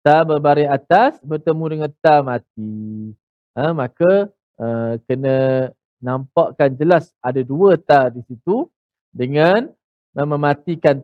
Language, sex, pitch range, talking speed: Malayalam, male, 135-190 Hz, 115 wpm